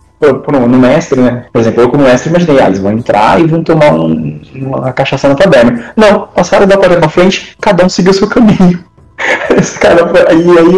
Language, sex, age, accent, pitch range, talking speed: Portuguese, male, 20-39, Brazilian, 125-180 Hz, 190 wpm